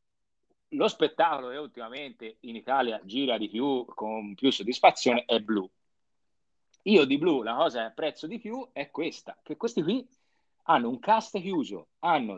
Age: 40-59